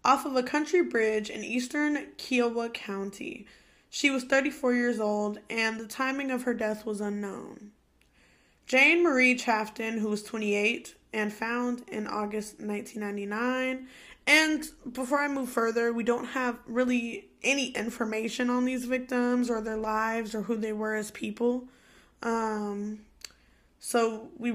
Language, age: English, 10-29